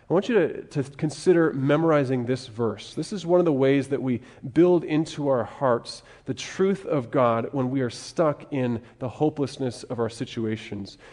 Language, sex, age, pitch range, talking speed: English, male, 30-49, 130-160 Hz, 190 wpm